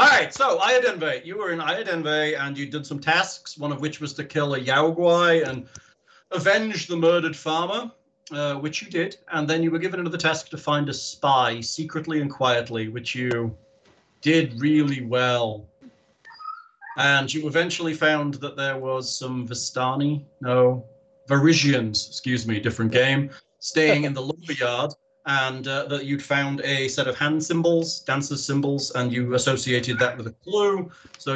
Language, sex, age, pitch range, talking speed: English, male, 40-59, 125-155 Hz, 170 wpm